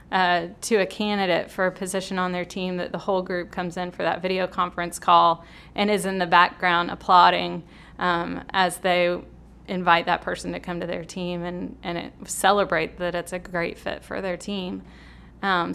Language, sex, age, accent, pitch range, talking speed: English, female, 20-39, American, 175-205 Hz, 190 wpm